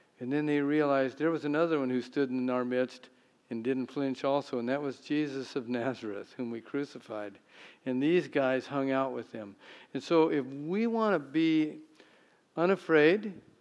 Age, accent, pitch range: 50-69, American, 125-150 Hz